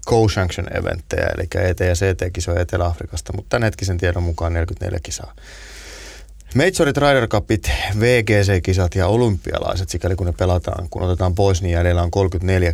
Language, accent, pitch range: Finnish, native, 85-100 Hz